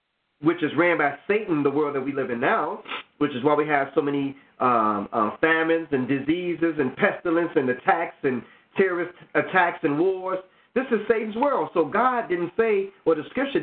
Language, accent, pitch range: English, American, 160-220 Hz